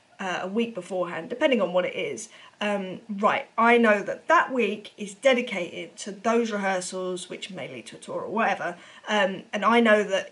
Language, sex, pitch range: English, female, 190-240 Hz